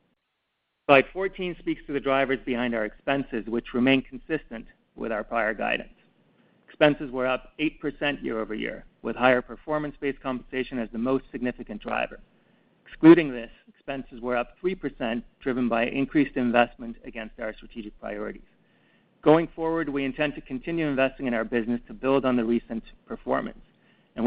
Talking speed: 150 wpm